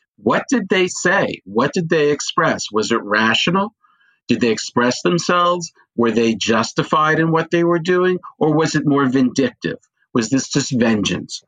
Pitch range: 125-180 Hz